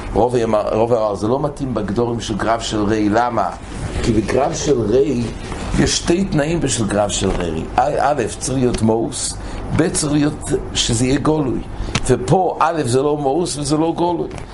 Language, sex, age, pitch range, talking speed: English, male, 60-79, 105-145 Hz, 135 wpm